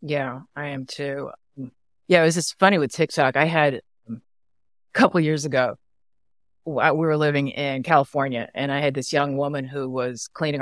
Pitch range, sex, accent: 140-200 Hz, female, American